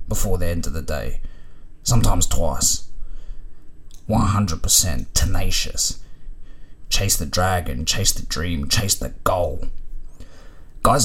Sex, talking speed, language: male, 110 wpm, English